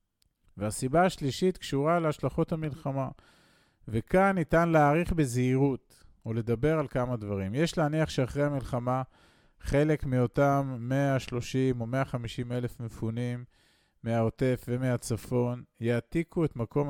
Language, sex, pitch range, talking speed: Hebrew, male, 115-145 Hz, 105 wpm